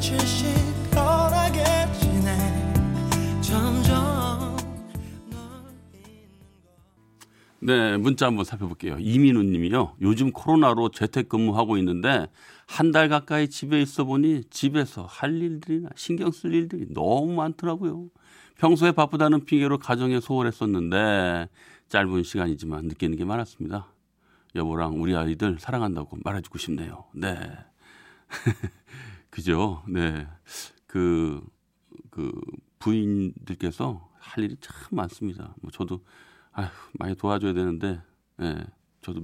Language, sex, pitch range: Korean, male, 90-130 Hz